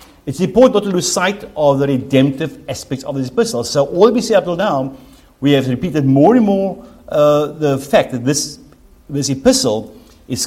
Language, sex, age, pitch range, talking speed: English, male, 60-79, 135-185 Hz, 195 wpm